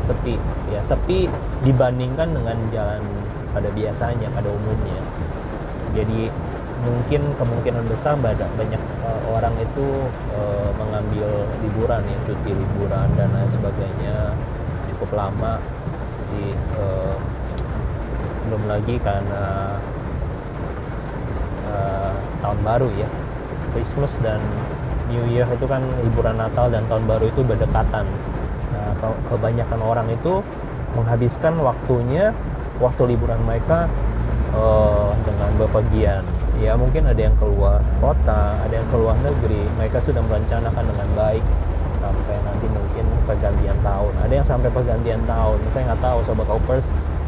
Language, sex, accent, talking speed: Indonesian, male, native, 120 wpm